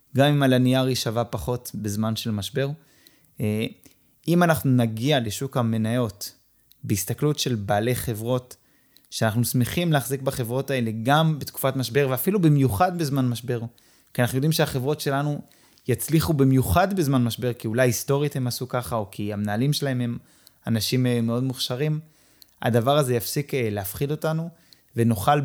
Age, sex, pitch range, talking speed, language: 20-39, male, 115-145 Hz, 135 wpm, Hebrew